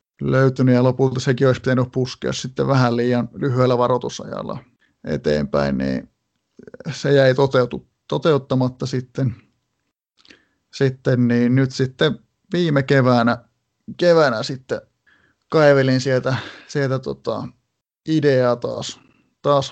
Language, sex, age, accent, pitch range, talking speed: Finnish, male, 30-49, native, 125-140 Hz, 105 wpm